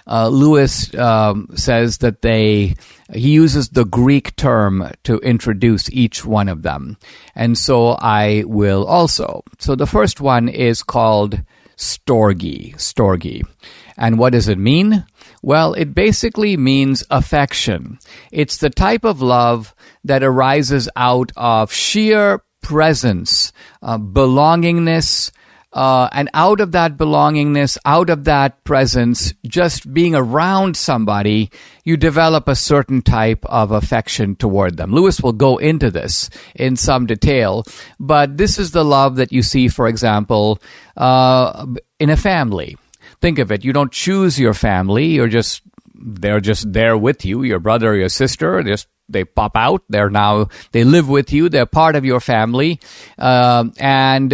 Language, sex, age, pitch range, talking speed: English, male, 50-69, 110-145 Hz, 150 wpm